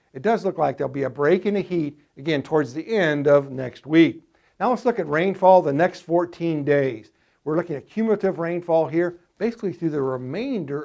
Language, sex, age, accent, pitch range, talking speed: English, male, 60-79, American, 145-185 Hz, 205 wpm